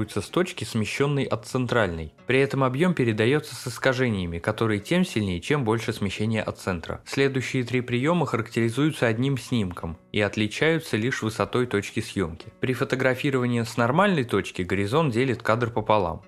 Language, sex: Russian, male